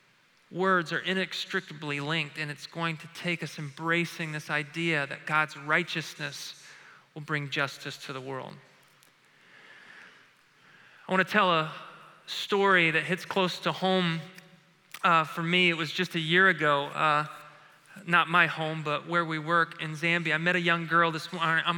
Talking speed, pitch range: 165 wpm, 160-185 Hz